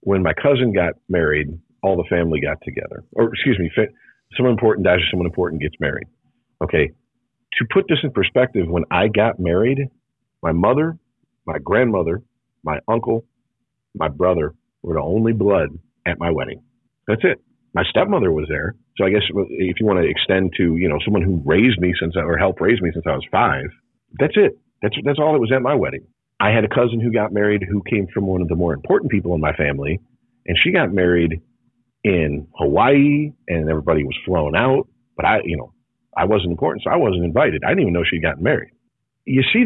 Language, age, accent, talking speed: English, 40-59, American, 205 wpm